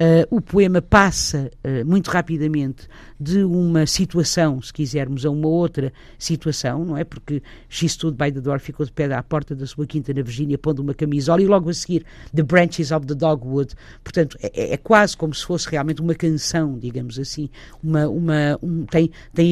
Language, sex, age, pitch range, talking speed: Portuguese, female, 50-69, 140-175 Hz, 195 wpm